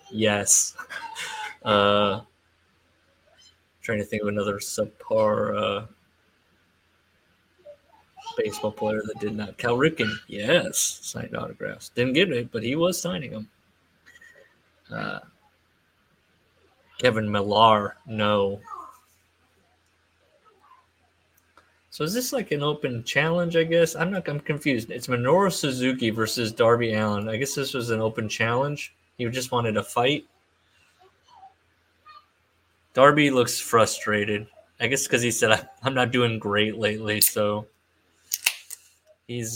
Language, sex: English, male